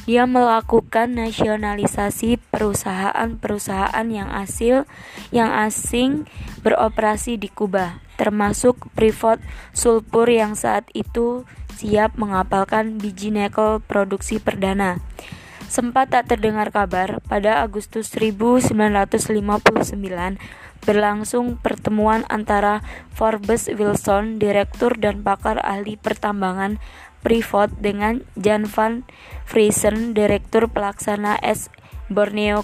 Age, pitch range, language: 20-39, 205-225 Hz, Indonesian